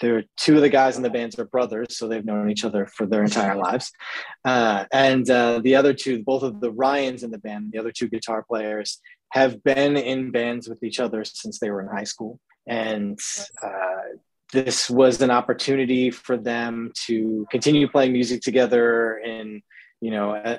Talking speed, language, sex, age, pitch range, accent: 200 wpm, English, male, 20-39, 115-130 Hz, American